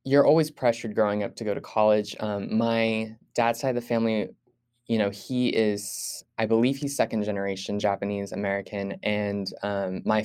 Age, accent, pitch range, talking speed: 10-29, American, 105-115 Hz, 170 wpm